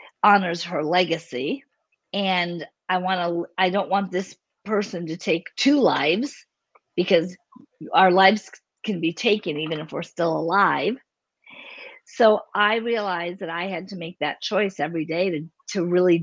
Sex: female